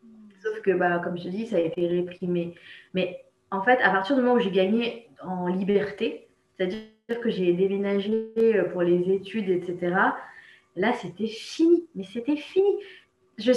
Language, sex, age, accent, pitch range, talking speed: French, female, 20-39, French, 190-240 Hz, 170 wpm